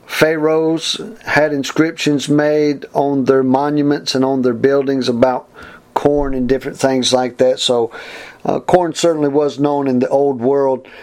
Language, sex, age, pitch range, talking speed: English, male, 50-69, 125-150 Hz, 150 wpm